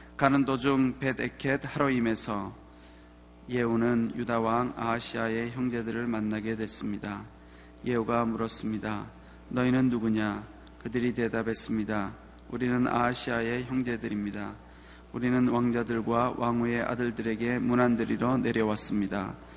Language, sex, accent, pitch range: Korean, male, native, 110-125 Hz